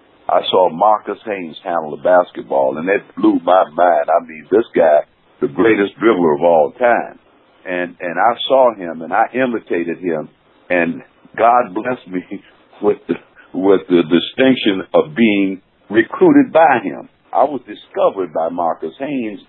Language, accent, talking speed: English, American, 155 wpm